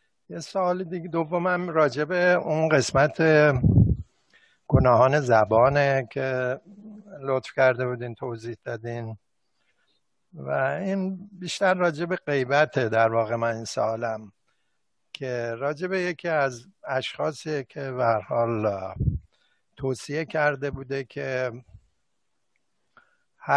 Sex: male